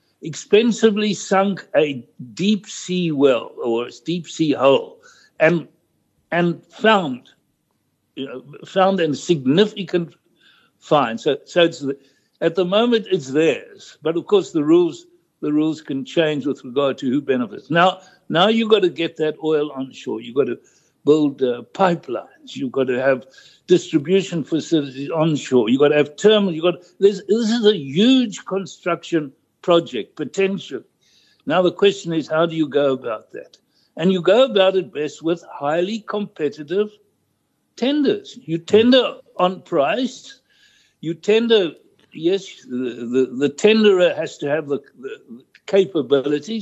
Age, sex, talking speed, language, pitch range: 60-79, male, 150 wpm, English, 155-220 Hz